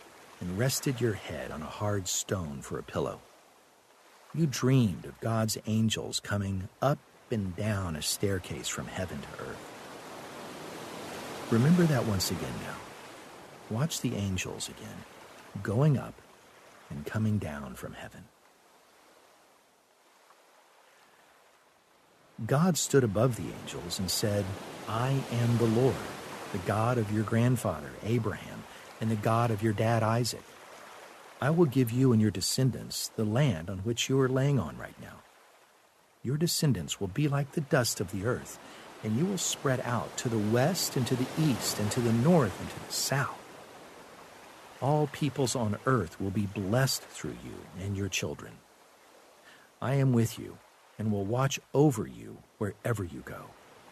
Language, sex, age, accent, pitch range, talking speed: English, male, 50-69, American, 105-135 Hz, 150 wpm